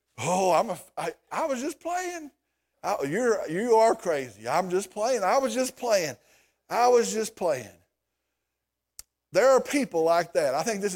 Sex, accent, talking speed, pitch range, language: male, American, 155 wpm, 185-275 Hz, English